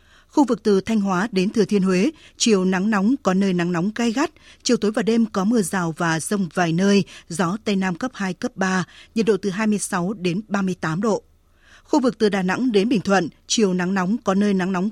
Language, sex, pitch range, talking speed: Vietnamese, female, 185-220 Hz, 235 wpm